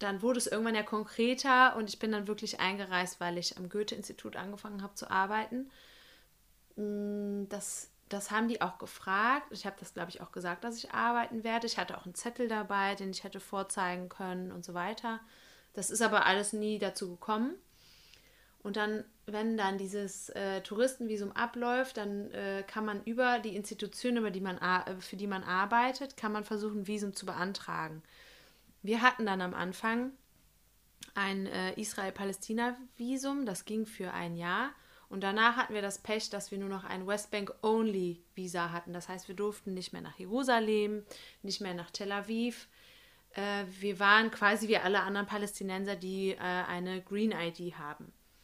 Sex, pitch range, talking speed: female, 190-220 Hz, 170 wpm